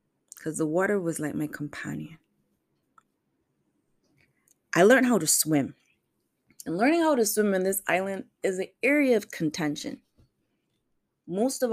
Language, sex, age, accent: English, female, 20-39, American